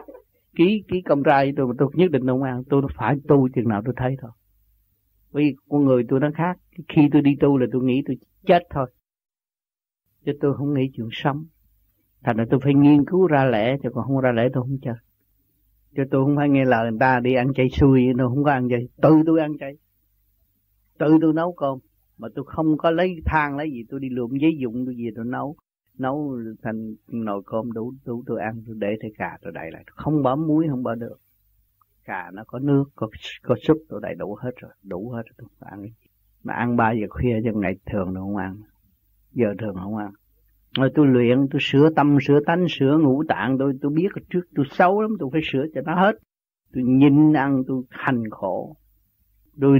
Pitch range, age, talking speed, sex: 110-145 Hz, 30-49, 220 wpm, male